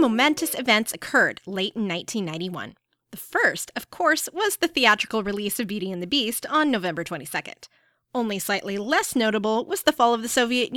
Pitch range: 190-280 Hz